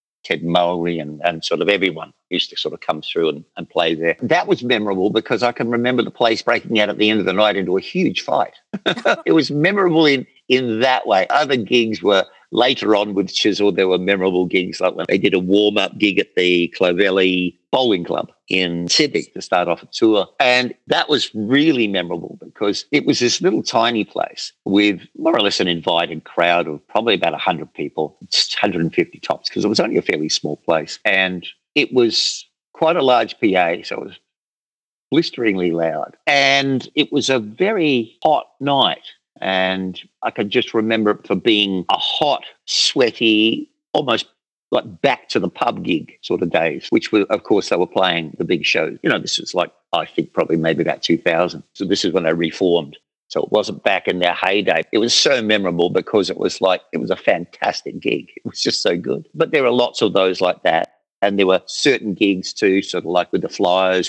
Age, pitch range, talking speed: 50-69, 90-110 Hz, 205 wpm